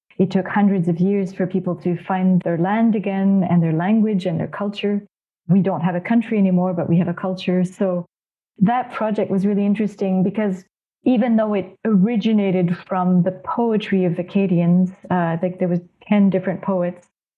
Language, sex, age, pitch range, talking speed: English, female, 30-49, 180-205 Hz, 185 wpm